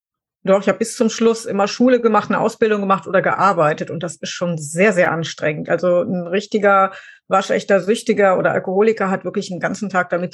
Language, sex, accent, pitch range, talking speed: German, female, German, 185-220 Hz, 195 wpm